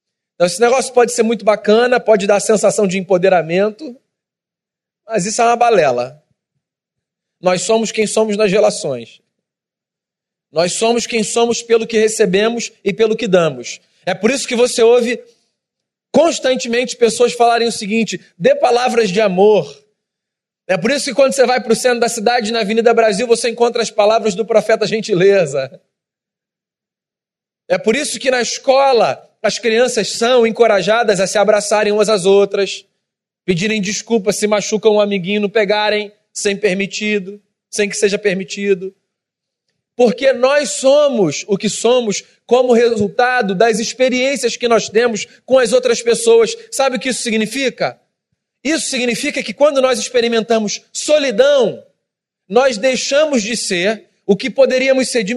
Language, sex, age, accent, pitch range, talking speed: Portuguese, male, 40-59, Brazilian, 205-245 Hz, 150 wpm